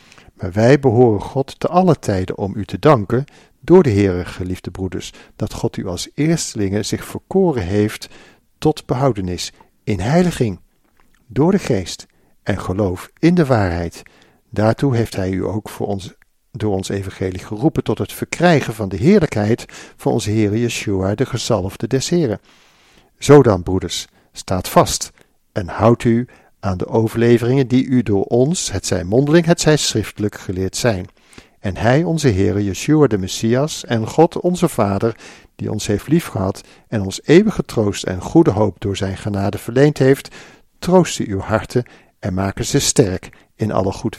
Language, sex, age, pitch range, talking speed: Dutch, male, 50-69, 100-135 Hz, 160 wpm